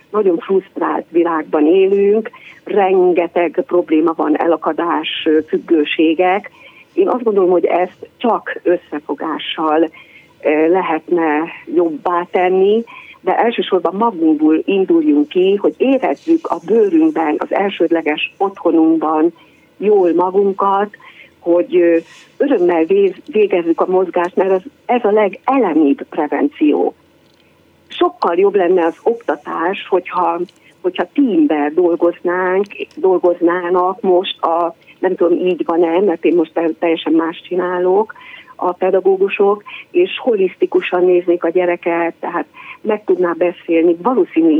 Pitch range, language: 170-280 Hz, Hungarian